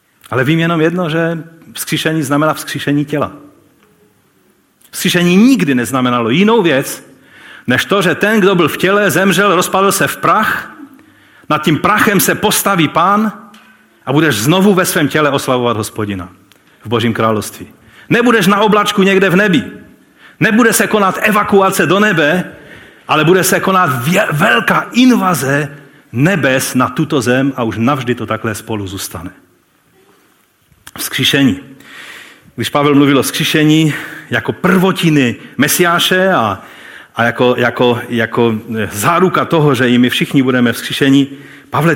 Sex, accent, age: male, native, 40-59